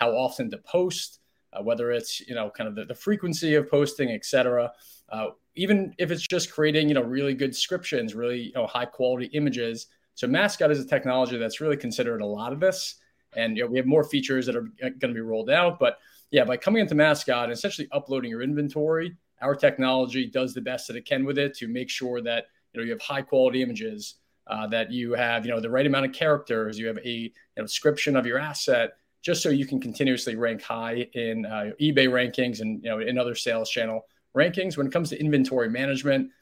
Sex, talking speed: male, 225 wpm